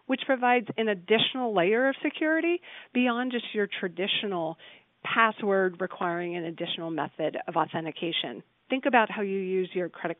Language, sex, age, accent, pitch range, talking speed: English, female, 40-59, American, 175-255 Hz, 145 wpm